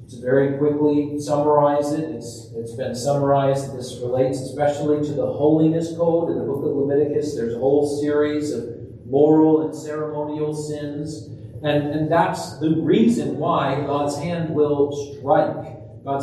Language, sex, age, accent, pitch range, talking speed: English, male, 40-59, American, 120-150 Hz, 150 wpm